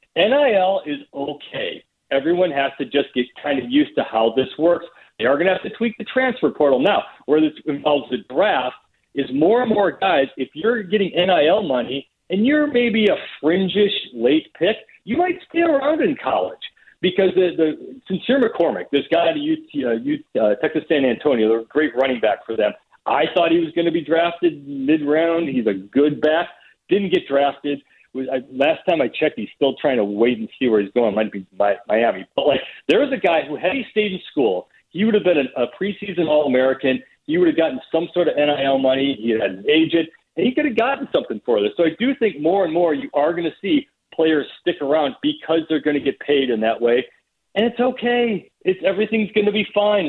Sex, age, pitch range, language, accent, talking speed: male, 50-69, 140-205 Hz, English, American, 220 wpm